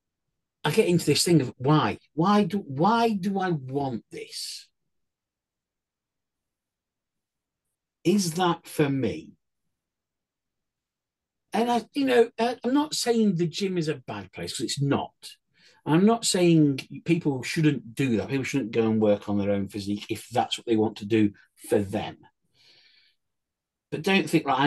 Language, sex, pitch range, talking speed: English, male, 110-170 Hz, 155 wpm